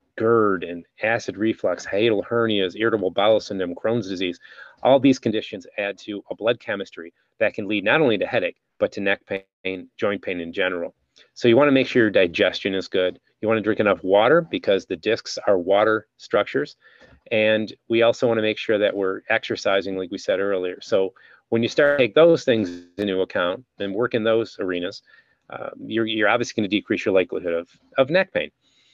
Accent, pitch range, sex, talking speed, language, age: American, 95-115 Hz, male, 205 wpm, English, 30-49